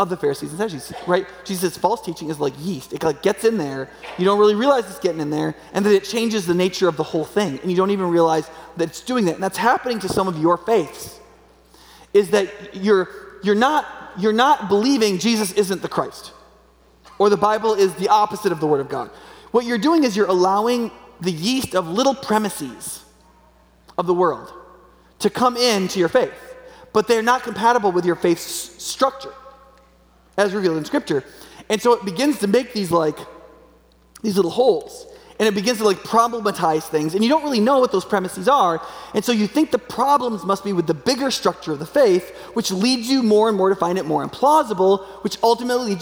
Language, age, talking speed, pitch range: English, 30-49, 215 wpm, 180-245 Hz